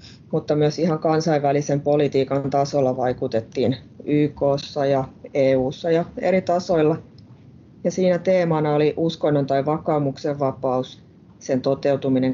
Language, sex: Finnish, female